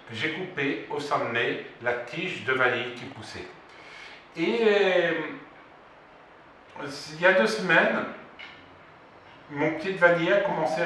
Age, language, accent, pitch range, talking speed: 50-69, English, French, 115-170 Hz, 125 wpm